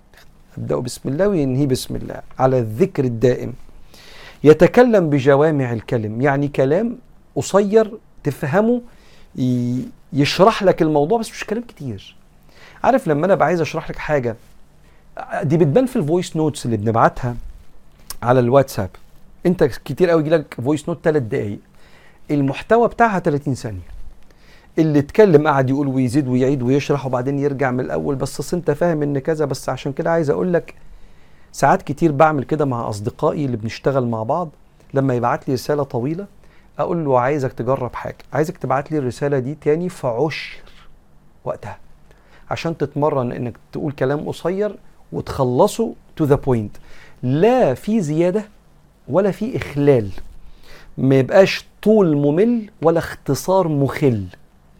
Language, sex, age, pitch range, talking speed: Arabic, male, 50-69, 125-165 Hz, 135 wpm